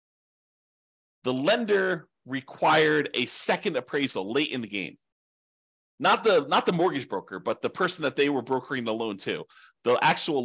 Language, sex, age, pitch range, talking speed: English, male, 40-59, 115-150 Hz, 160 wpm